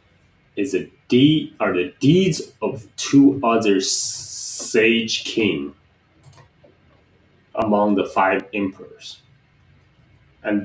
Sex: male